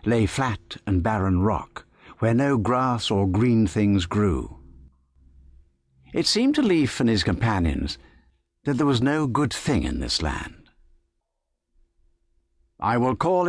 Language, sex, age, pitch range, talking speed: English, male, 60-79, 70-115 Hz, 140 wpm